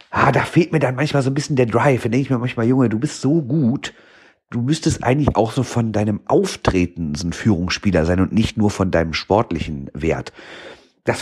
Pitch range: 90-125 Hz